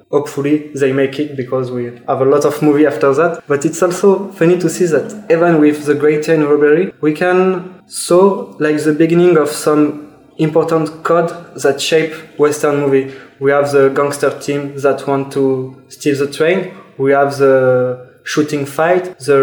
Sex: male